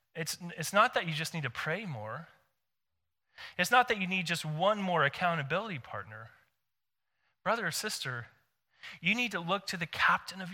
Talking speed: 175 wpm